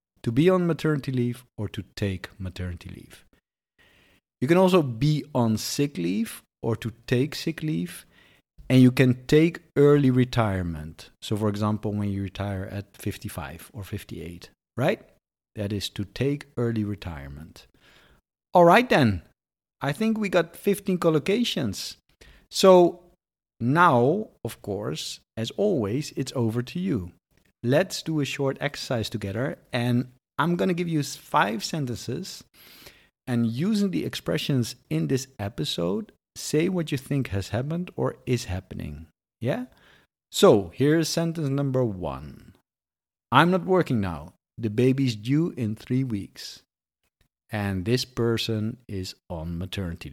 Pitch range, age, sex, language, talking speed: 100-145 Hz, 50-69, male, English, 140 wpm